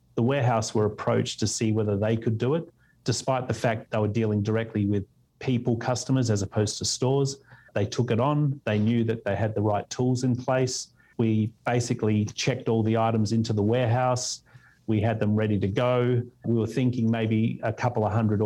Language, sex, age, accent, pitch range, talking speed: English, male, 30-49, Australian, 105-125 Hz, 200 wpm